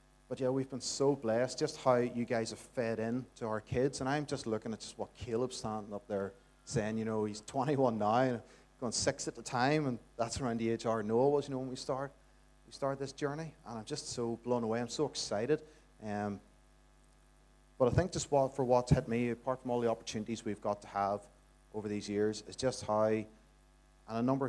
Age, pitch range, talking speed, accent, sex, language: 30-49, 105-130 Hz, 230 wpm, Irish, male, English